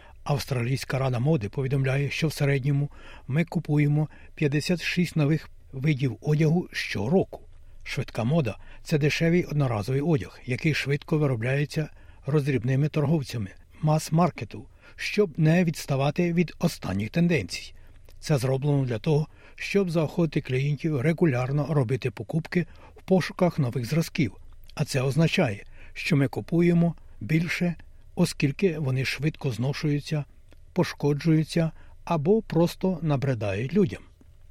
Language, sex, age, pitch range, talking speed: Ukrainian, male, 60-79, 125-160 Hz, 110 wpm